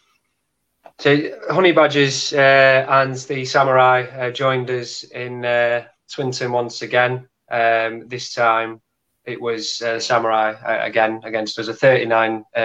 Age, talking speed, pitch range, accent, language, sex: 20-39, 140 wpm, 110-125 Hz, British, English, male